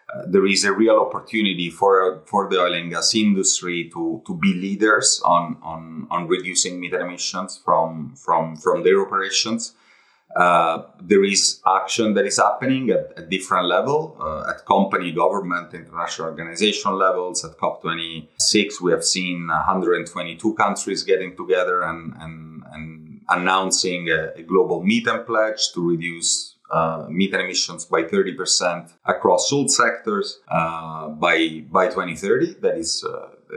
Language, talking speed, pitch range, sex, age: English, 155 wpm, 85-125 Hz, male, 30-49